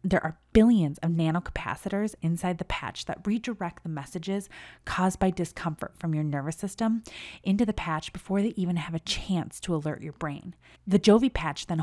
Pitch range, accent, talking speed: 155-205 Hz, American, 190 wpm